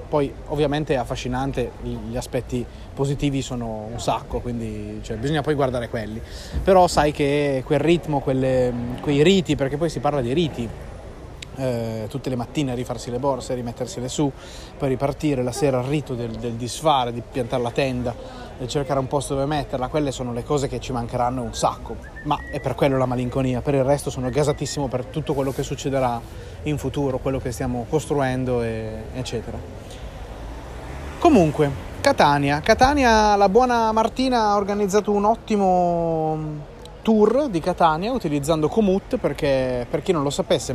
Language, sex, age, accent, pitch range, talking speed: Italian, male, 30-49, native, 125-155 Hz, 160 wpm